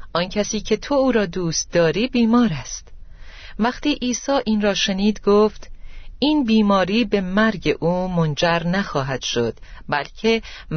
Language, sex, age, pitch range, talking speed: Persian, female, 40-59, 155-225 Hz, 140 wpm